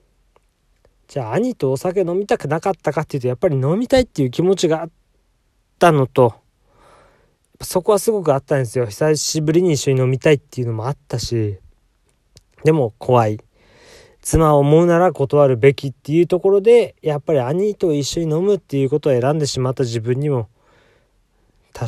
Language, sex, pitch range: Japanese, male, 125-170 Hz